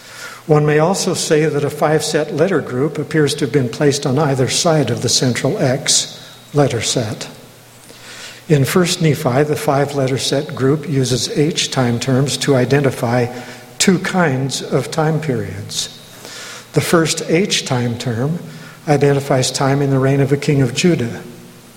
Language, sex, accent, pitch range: English, male, American, 125-150 Hz